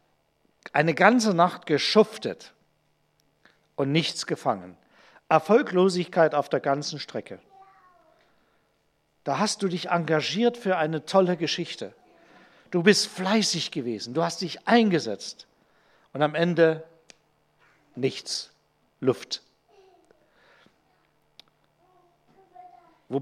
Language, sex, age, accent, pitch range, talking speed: German, male, 50-69, German, 160-225 Hz, 90 wpm